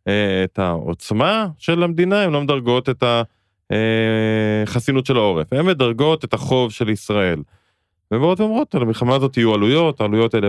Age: 20-39